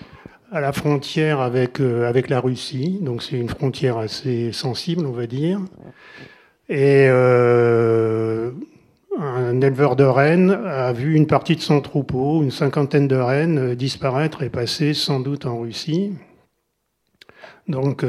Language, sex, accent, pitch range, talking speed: French, male, French, 130-165 Hz, 135 wpm